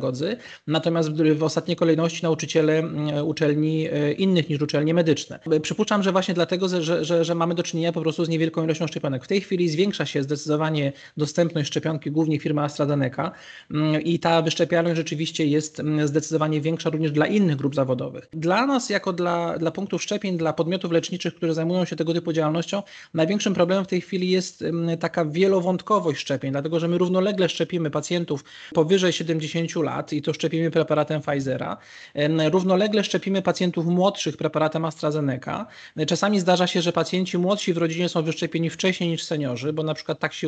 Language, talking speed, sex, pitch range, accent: Polish, 165 wpm, male, 155-185 Hz, native